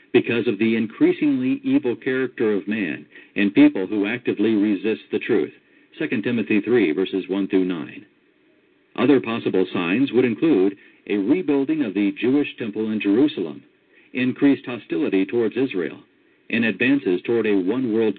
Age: 50-69